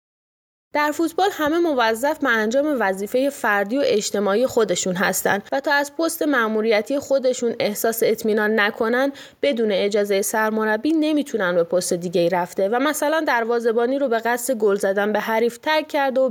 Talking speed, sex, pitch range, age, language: 160 wpm, female, 215-275 Hz, 20-39, Persian